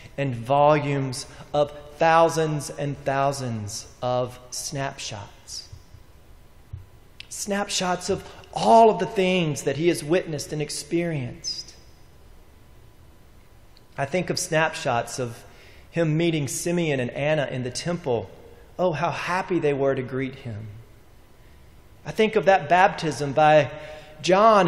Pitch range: 130-195 Hz